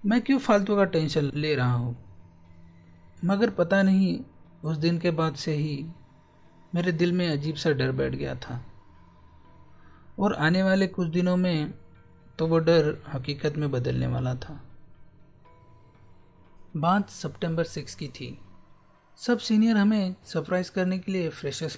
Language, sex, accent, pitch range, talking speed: Hindi, male, native, 125-180 Hz, 145 wpm